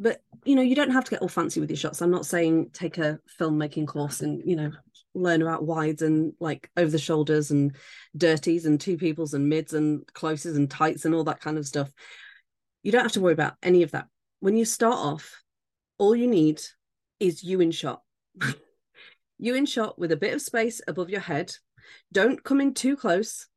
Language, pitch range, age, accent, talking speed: English, 155-200 Hz, 30-49, British, 205 wpm